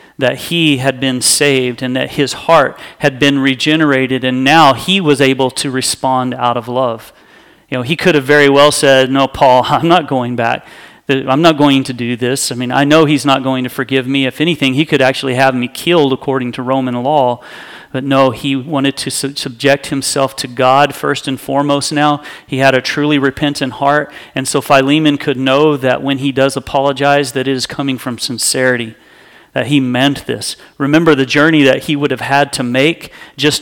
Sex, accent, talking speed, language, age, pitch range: male, American, 205 wpm, English, 40-59, 130-145 Hz